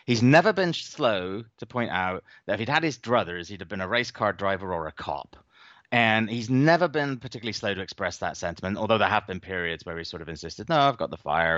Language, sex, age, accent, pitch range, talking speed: English, male, 30-49, British, 95-130 Hz, 250 wpm